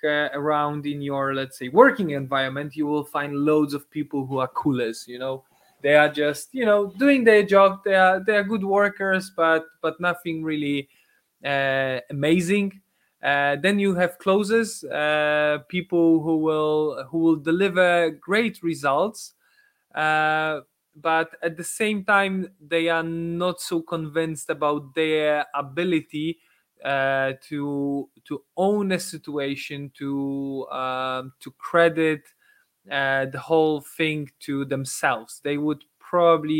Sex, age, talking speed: male, 20-39, 140 wpm